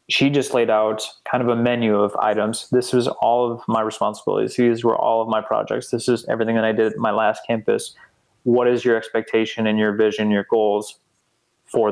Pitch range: 105-120 Hz